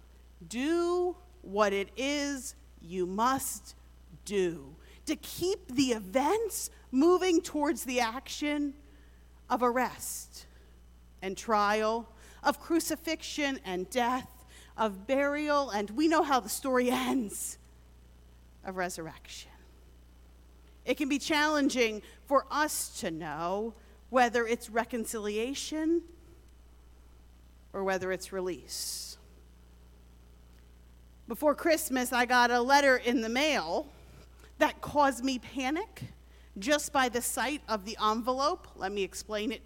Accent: American